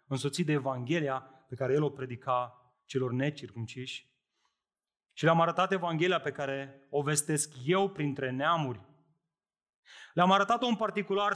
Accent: native